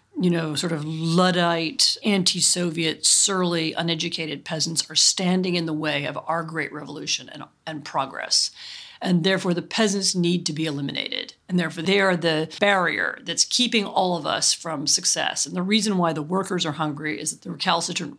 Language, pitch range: English, 160-195 Hz